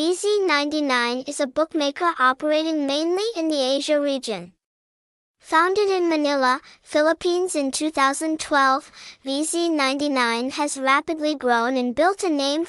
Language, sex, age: English, male, 10-29